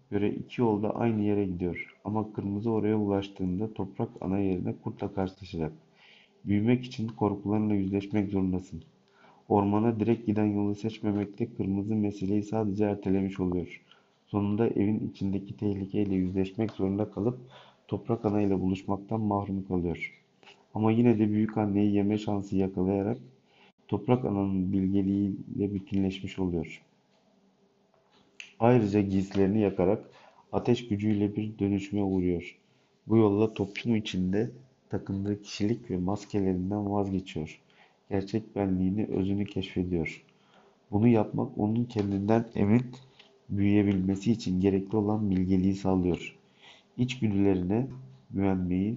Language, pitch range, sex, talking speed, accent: Turkish, 95-110 Hz, male, 110 wpm, native